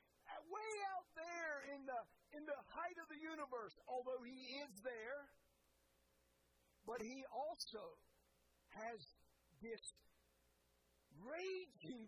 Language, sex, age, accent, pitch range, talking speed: English, male, 50-69, American, 195-275 Hz, 105 wpm